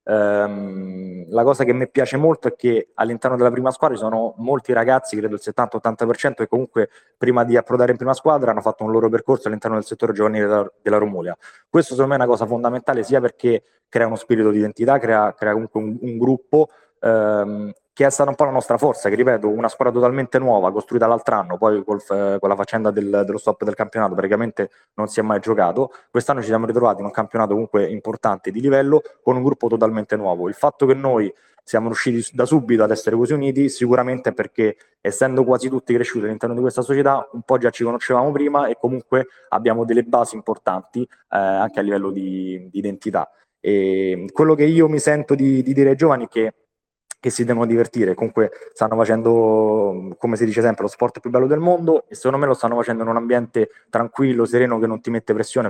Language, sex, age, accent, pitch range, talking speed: Italian, male, 20-39, native, 105-130 Hz, 210 wpm